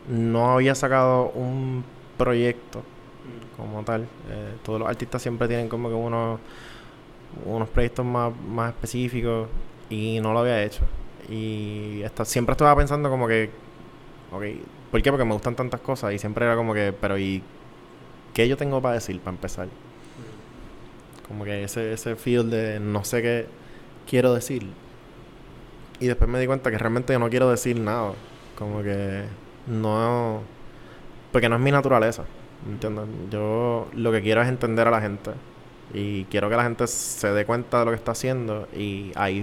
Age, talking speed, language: 20-39, 170 wpm, Spanish